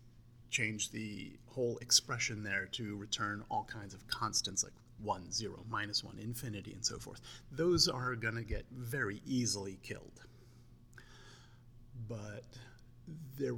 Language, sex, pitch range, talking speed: English, male, 110-120 Hz, 135 wpm